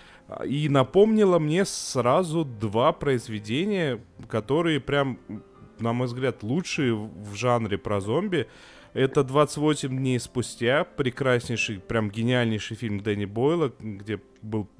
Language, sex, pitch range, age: Russian, male, 115-140 Hz, 20-39